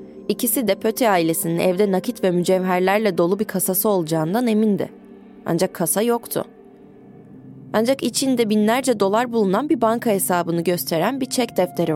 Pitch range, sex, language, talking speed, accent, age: 170-215 Hz, female, Turkish, 140 wpm, native, 20-39